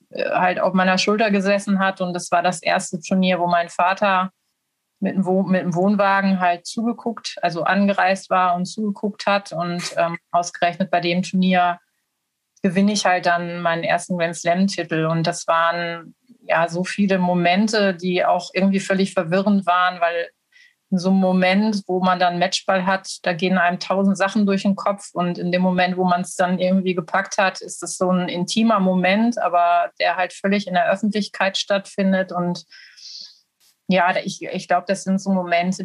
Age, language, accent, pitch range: 30-49, German, German, 175-200 Hz